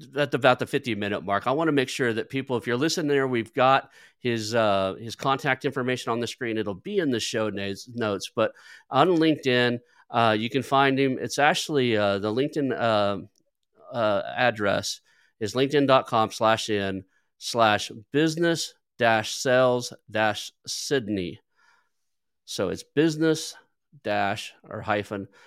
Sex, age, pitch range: male, 40-59, 100-130 Hz